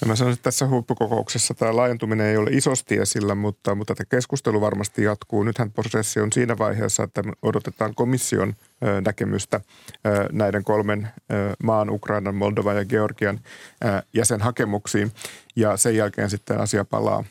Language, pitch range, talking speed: Finnish, 100-115 Hz, 145 wpm